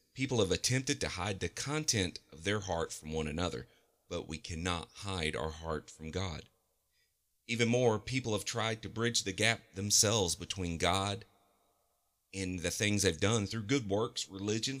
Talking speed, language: 170 wpm, English